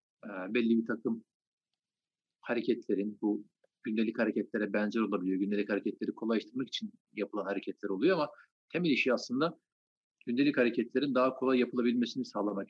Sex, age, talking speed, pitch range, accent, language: male, 50-69, 130 wpm, 105-130 Hz, native, Turkish